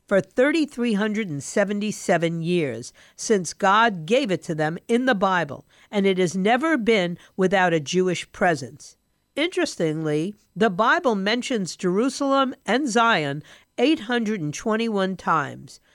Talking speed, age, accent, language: 115 wpm, 50-69, American, English